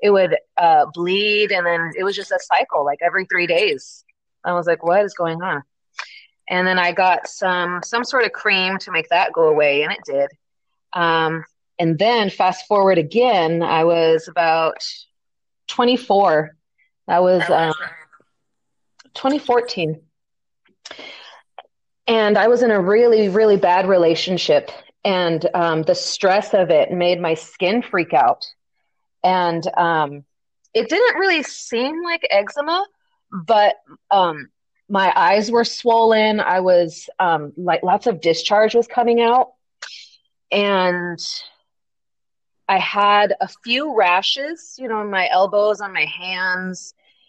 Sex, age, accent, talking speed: female, 30-49, American, 140 wpm